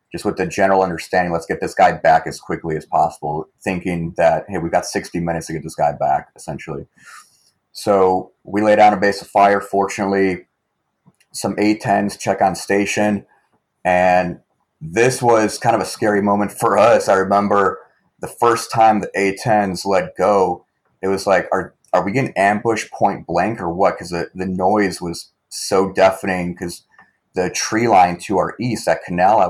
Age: 30-49